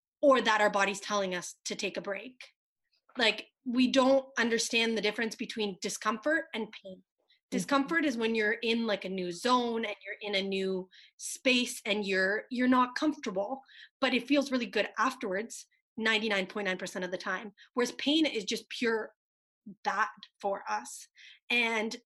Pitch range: 205-260 Hz